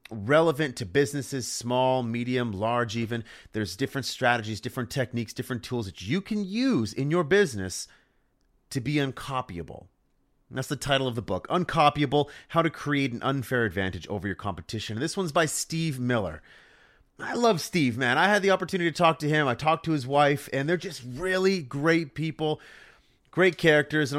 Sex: male